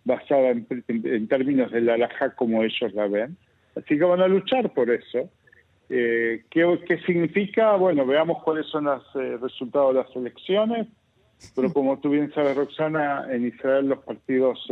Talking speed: 170 wpm